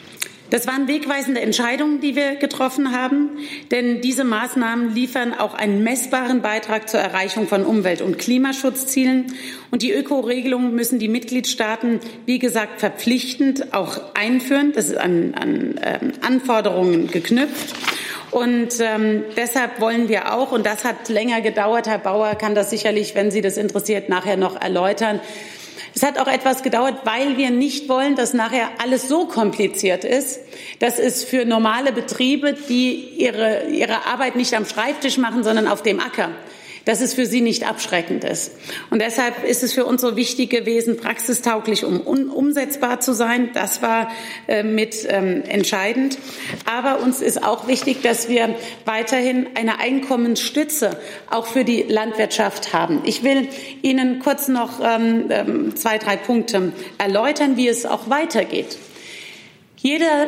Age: 40-59